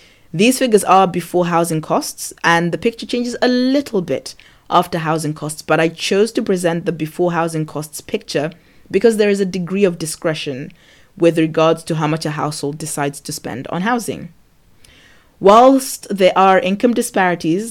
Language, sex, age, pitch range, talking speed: English, female, 20-39, 155-190 Hz, 170 wpm